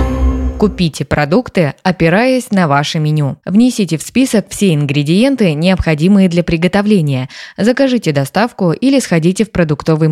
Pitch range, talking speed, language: 150-210 Hz, 120 wpm, Russian